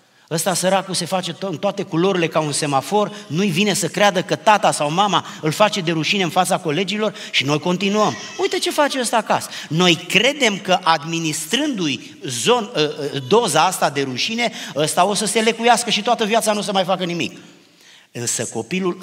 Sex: male